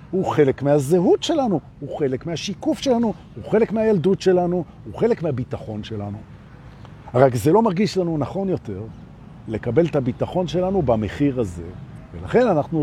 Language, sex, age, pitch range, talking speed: Hebrew, male, 50-69, 120-195 Hz, 140 wpm